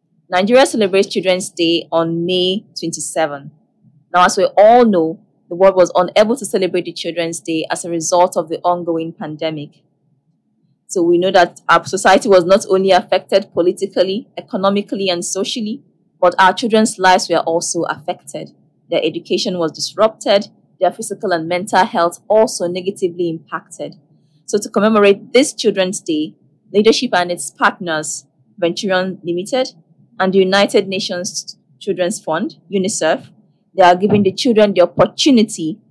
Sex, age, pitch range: female, 20-39, 170-200 Hz